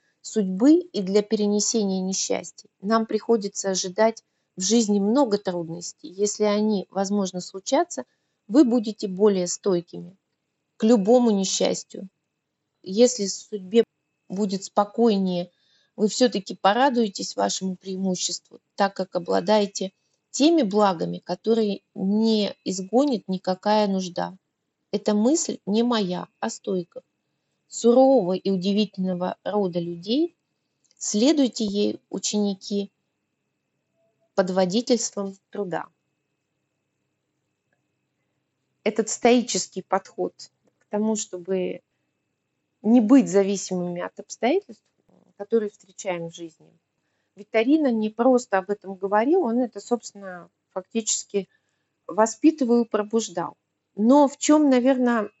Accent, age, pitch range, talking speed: native, 30-49, 190-230 Hz, 100 wpm